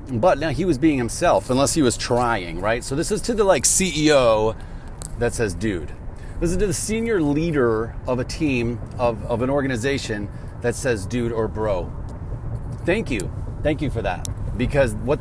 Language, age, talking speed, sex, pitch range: English, 40-59, 185 wpm, male, 115-150 Hz